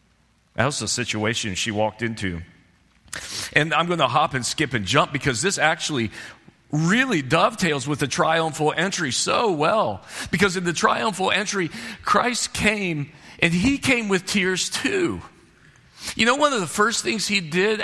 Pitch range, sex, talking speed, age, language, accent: 155-210 Hz, male, 165 wpm, 40-59, English, American